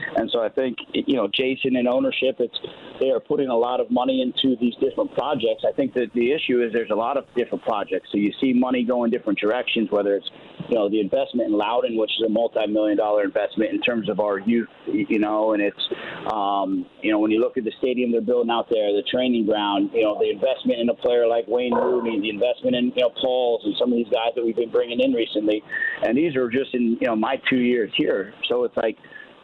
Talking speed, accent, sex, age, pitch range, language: 245 wpm, American, male, 40-59, 115-140 Hz, English